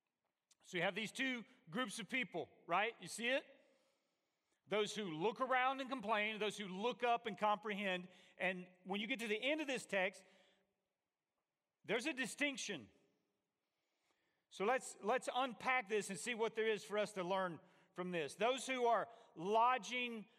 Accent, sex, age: American, male, 40-59